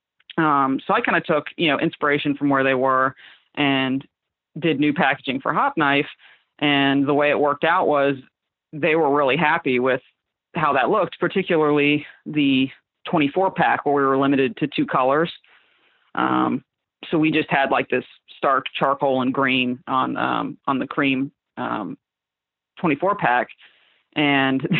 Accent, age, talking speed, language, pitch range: American, 30-49, 160 wpm, English, 135-165 Hz